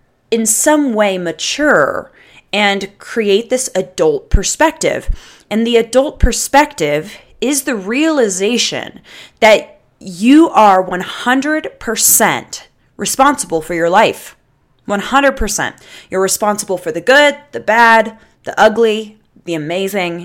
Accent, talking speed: American, 105 wpm